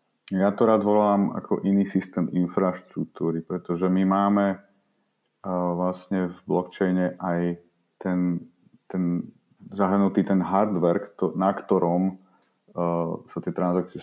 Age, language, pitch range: 30-49, Slovak, 85-100 Hz